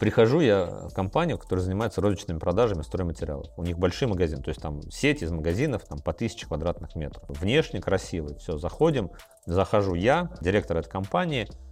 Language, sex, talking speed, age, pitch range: Russian, male, 170 wpm, 30-49, 85-120 Hz